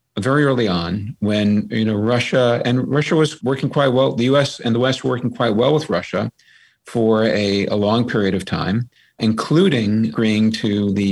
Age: 50-69